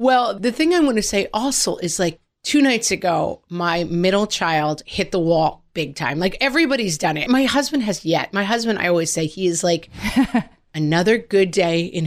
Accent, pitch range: American, 165-235 Hz